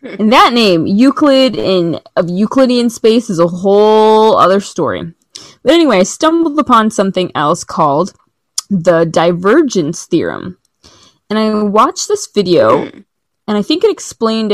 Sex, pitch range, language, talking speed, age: female, 180-220 Hz, English, 140 wpm, 20-39